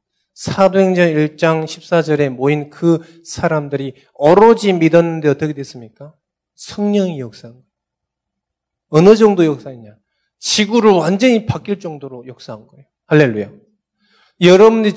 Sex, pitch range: male, 130-185 Hz